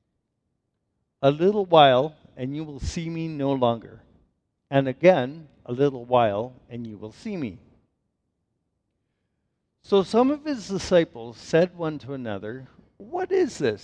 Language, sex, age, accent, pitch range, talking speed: English, male, 50-69, American, 110-140 Hz, 140 wpm